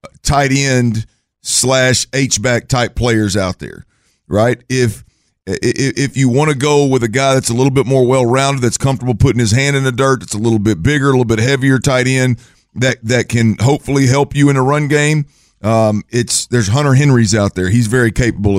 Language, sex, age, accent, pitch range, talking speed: English, male, 50-69, American, 110-135 Hz, 205 wpm